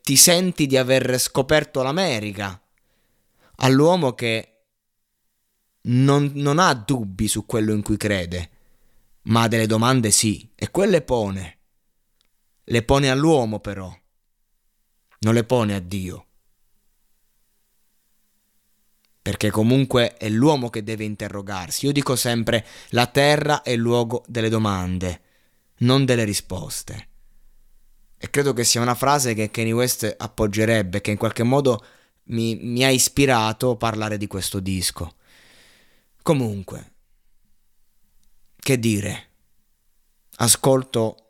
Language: Italian